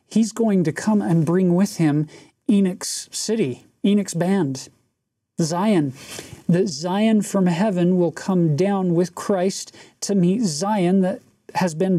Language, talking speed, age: English, 140 wpm, 40-59